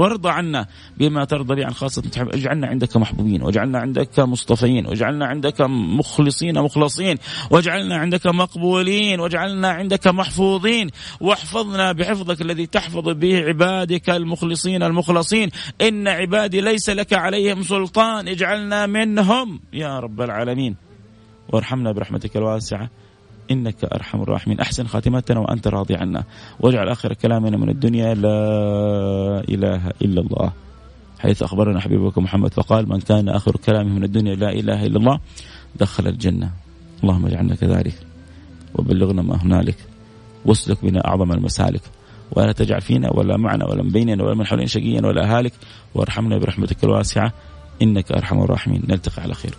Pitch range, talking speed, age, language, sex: 100-170 Hz, 135 wpm, 30-49, English, male